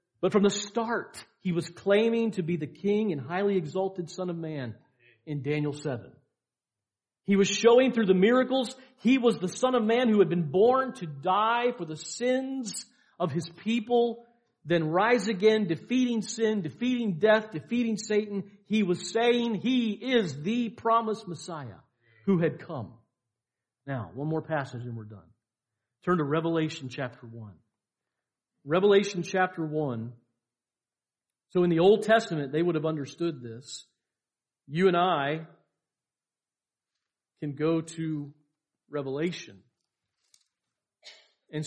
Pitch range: 145-210 Hz